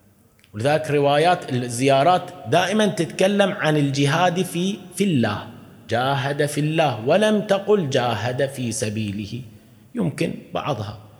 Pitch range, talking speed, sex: 125-175 Hz, 100 wpm, male